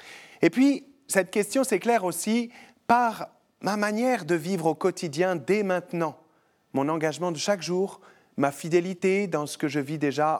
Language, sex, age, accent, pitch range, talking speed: French, male, 40-59, French, 150-190 Hz, 160 wpm